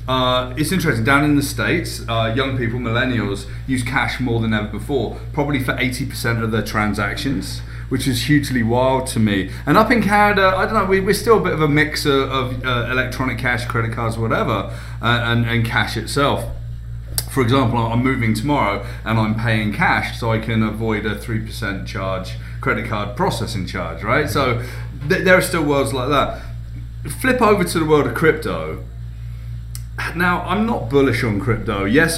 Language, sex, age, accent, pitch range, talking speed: English, male, 30-49, British, 110-130 Hz, 185 wpm